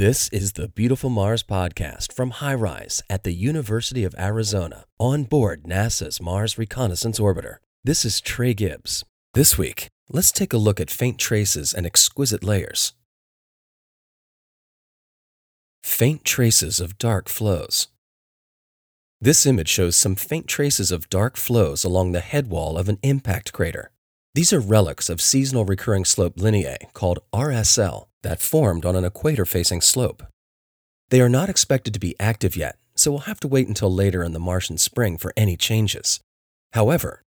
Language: English